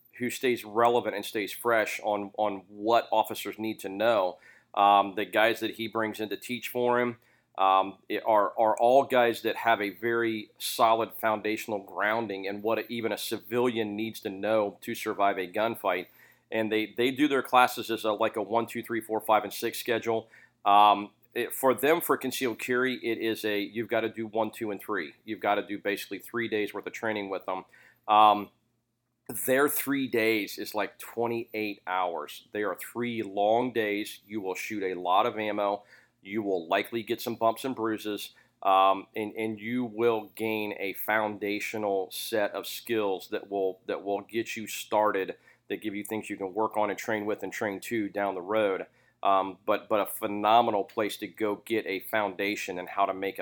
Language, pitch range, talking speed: English, 100-115 Hz, 195 wpm